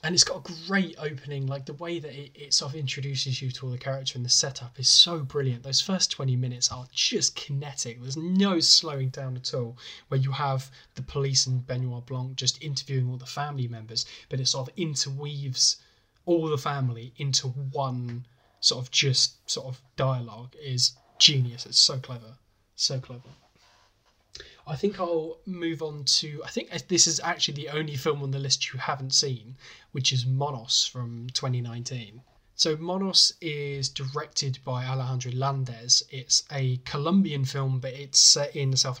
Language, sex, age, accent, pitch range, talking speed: English, male, 10-29, British, 125-150 Hz, 180 wpm